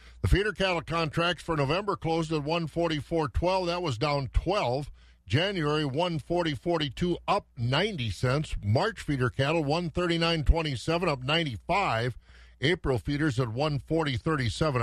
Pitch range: 110-155 Hz